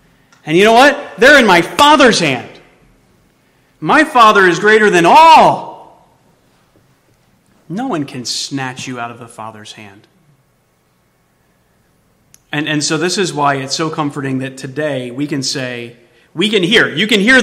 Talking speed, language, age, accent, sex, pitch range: 155 wpm, English, 30-49, American, male, 130-210 Hz